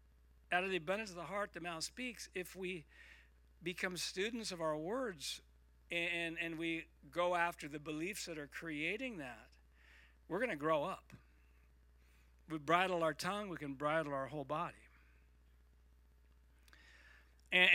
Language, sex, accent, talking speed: English, male, American, 150 wpm